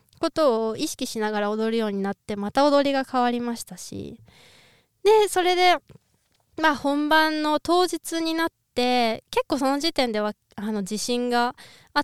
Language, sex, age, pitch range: Japanese, female, 20-39, 215-305 Hz